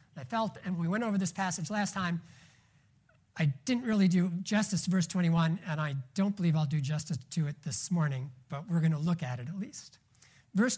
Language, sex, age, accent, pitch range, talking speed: English, male, 50-69, American, 155-230 Hz, 215 wpm